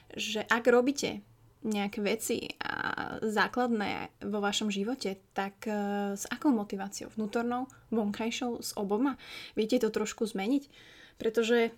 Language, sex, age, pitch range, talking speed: Slovak, female, 20-39, 200-230 Hz, 115 wpm